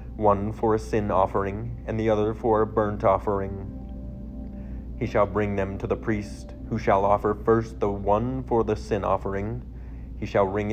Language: English